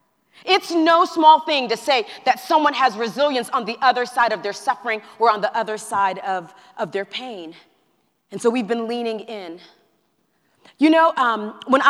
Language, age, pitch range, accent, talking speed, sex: English, 30-49, 225-285 Hz, American, 180 wpm, female